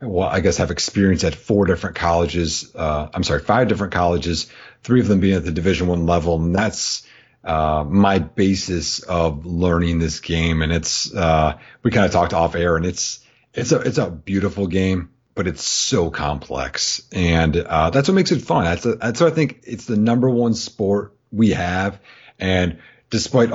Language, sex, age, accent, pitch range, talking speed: English, male, 40-59, American, 85-115 Hz, 195 wpm